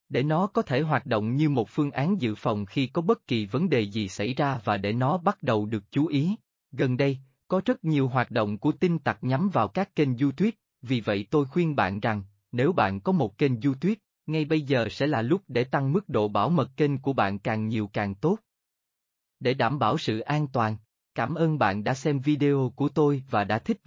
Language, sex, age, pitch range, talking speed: Vietnamese, male, 20-39, 115-155 Hz, 230 wpm